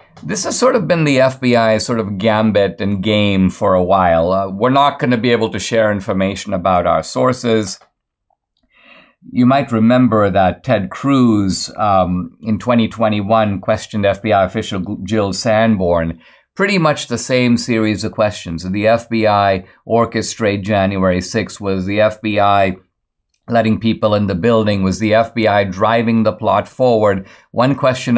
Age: 50-69